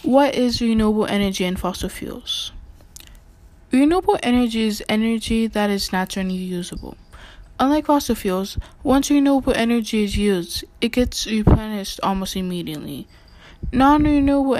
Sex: female